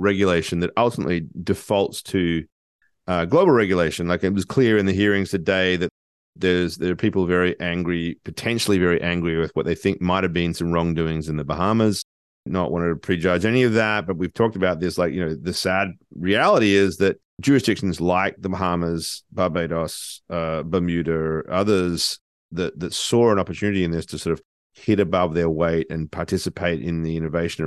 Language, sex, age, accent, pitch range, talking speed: English, male, 40-59, Australian, 80-95 Hz, 185 wpm